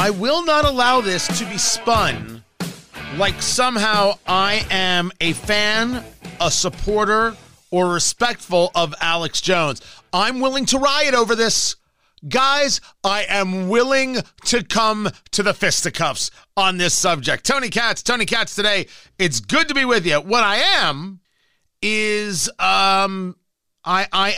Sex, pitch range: male, 155-210 Hz